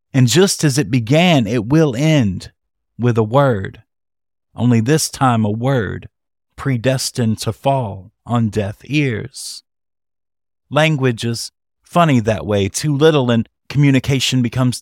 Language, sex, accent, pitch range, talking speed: English, male, American, 110-140 Hz, 130 wpm